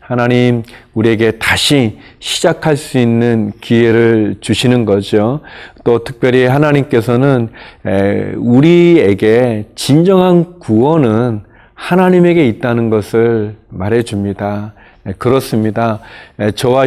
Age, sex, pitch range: 40-59, male, 115-140 Hz